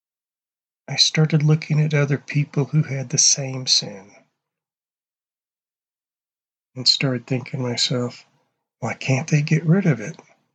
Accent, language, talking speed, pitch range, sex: American, English, 130 wpm, 125-160 Hz, male